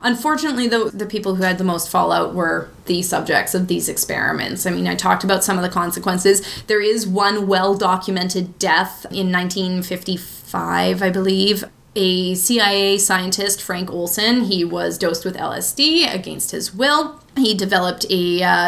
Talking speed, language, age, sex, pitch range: 160 wpm, English, 20-39, female, 180-210 Hz